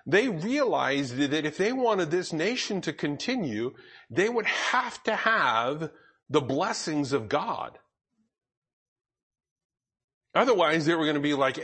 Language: English